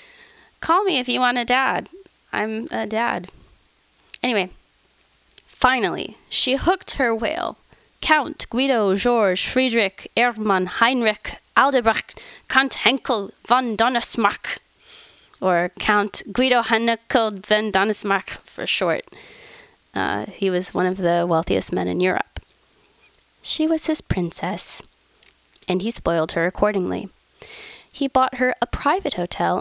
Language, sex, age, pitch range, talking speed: English, female, 20-39, 180-255 Hz, 120 wpm